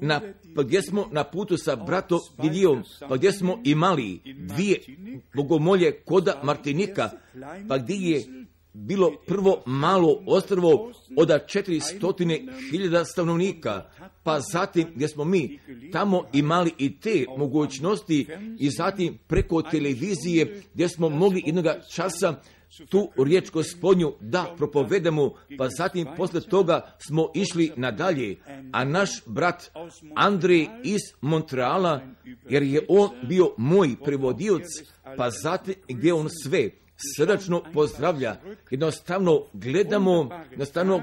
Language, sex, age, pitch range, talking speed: Croatian, male, 50-69, 145-185 Hz, 115 wpm